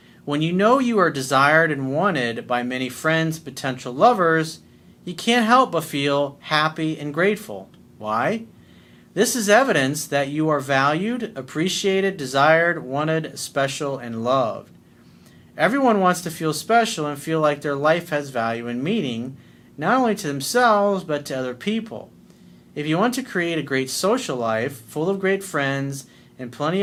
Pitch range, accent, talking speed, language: 130-185 Hz, American, 160 wpm, English